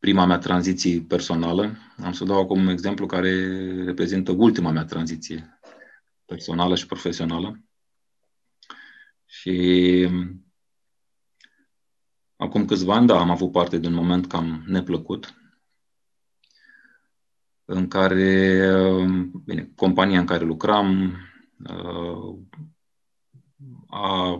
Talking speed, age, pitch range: 95 wpm, 30-49, 90-100 Hz